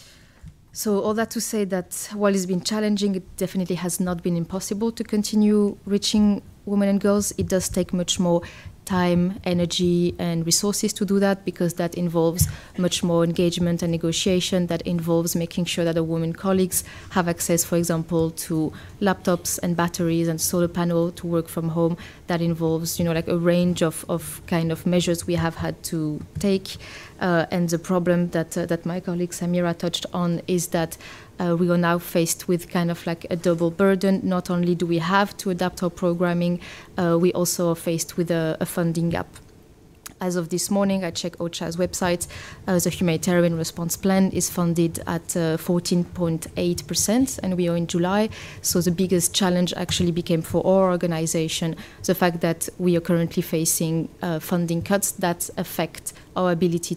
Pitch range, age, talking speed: 170-185 Hz, 20-39, 180 wpm